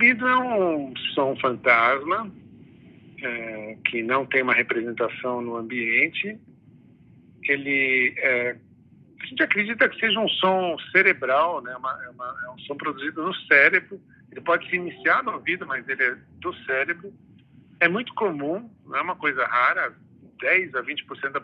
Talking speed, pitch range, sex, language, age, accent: 155 wpm, 125-190 Hz, male, Portuguese, 50-69, Brazilian